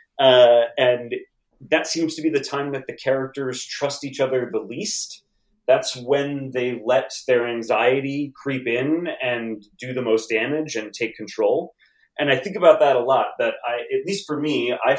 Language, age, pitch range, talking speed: English, 30-49, 115-155 Hz, 185 wpm